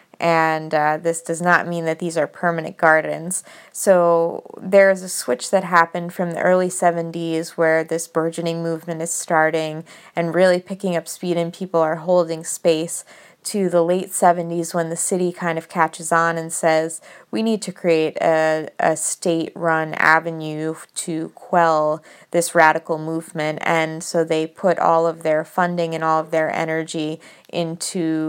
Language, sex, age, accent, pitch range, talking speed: English, female, 20-39, American, 160-175 Hz, 165 wpm